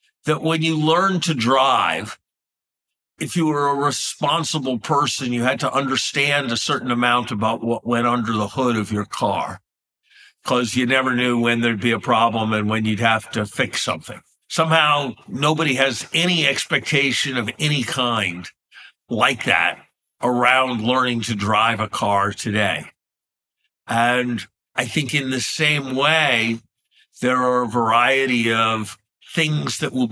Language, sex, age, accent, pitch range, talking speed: English, male, 50-69, American, 115-135 Hz, 150 wpm